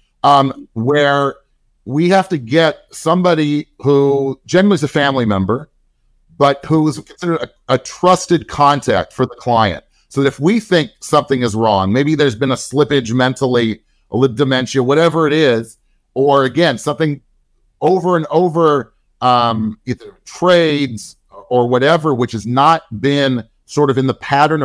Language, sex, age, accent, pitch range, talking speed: English, male, 40-59, American, 120-150 Hz, 155 wpm